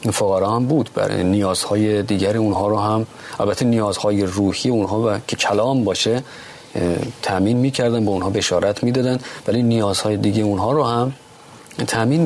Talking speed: 145 wpm